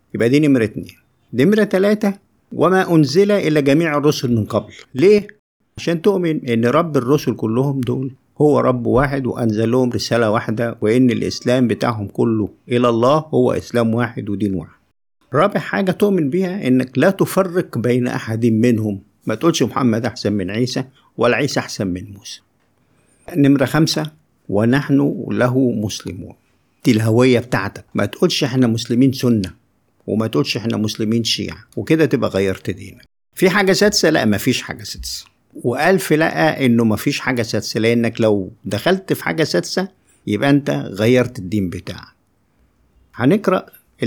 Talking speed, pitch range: 145 wpm, 110-145 Hz